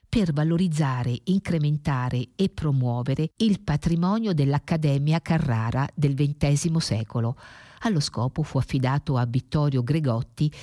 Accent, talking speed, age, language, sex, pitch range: native, 105 wpm, 50-69, Italian, female, 125-155 Hz